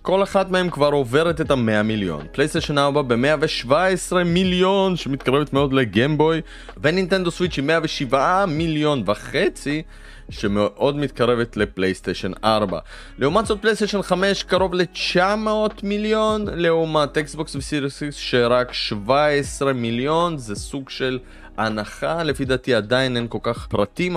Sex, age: male, 20-39